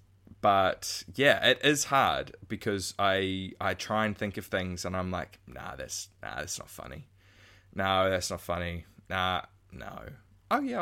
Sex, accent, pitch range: male, Australian, 90-105 Hz